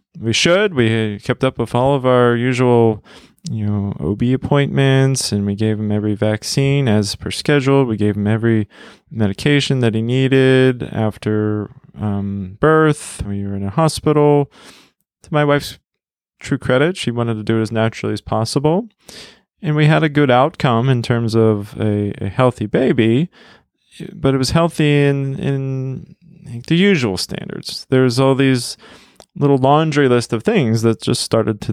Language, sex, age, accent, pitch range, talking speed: English, male, 20-39, American, 110-135 Hz, 165 wpm